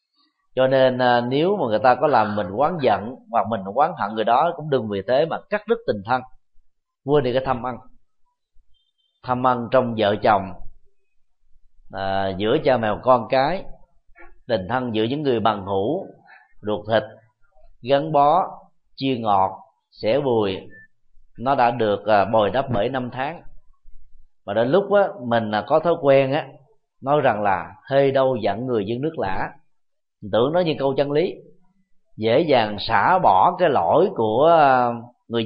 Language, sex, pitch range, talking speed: Vietnamese, male, 125-185 Hz, 165 wpm